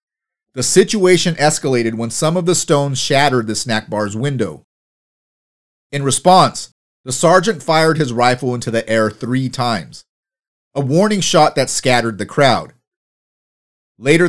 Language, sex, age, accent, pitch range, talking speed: English, male, 30-49, American, 125-165 Hz, 140 wpm